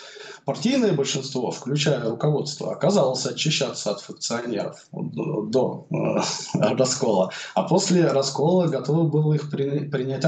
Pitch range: 125-165 Hz